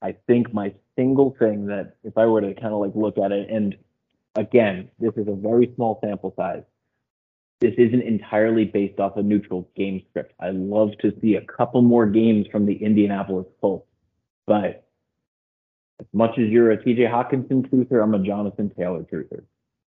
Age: 30-49